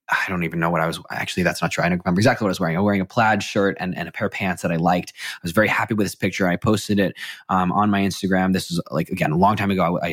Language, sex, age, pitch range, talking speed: English, male, 20-39, 90-105 Hz, 345 wpm